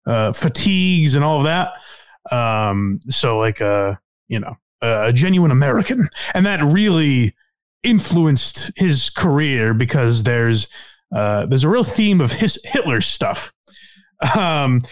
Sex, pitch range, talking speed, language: male, 115-180 Hz, 140 wpm, English